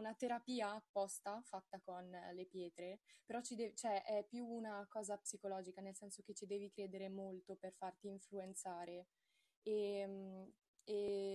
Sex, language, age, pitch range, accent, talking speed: female, Italian, 20-39, 190-210 Hz, native, 130 wpm